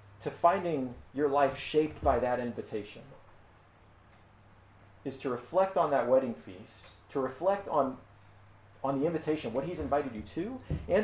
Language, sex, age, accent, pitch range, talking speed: English, male, 40-59, American, 100-150 Hz, 145 wpm